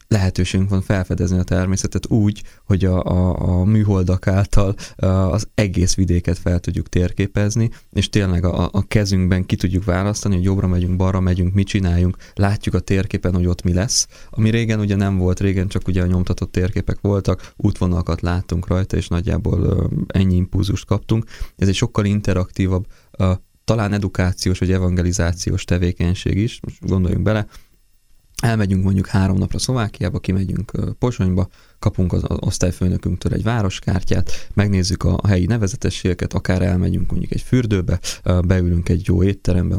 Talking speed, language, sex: 145 wpm, Hungarian, male